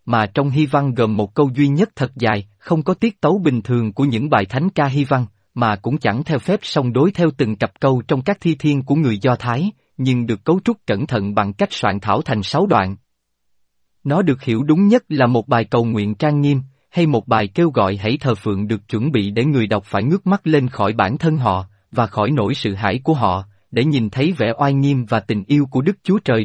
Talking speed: 250 wpm